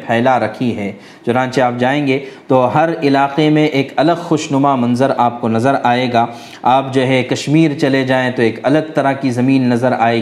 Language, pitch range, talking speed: Urdu, 125-160 Hz, 190 wpm